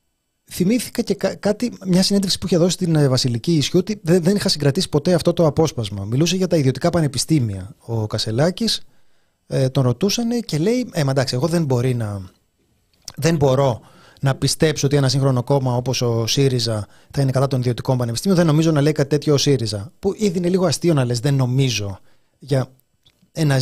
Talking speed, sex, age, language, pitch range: 185 wpm, male, 30-49, Greek, 125-175 Hz